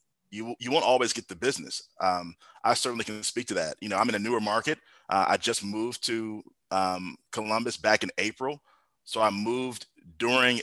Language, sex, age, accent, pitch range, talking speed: English, male, 30-49, American, 100-115 Hz, 200 wpm